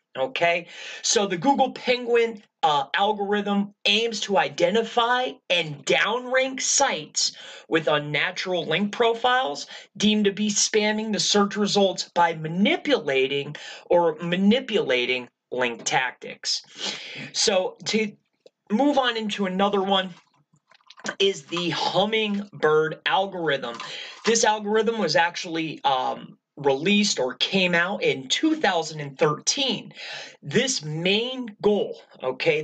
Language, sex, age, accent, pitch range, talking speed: English, male, 30-49, American, 170-230 Hz, 105 wpm